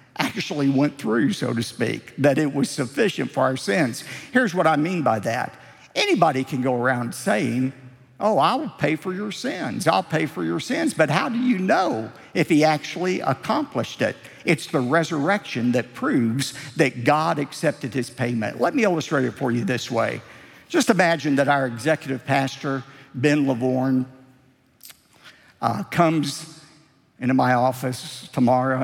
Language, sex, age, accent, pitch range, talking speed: English, male, 50-69, American, 130-165 Hz, 160 wpm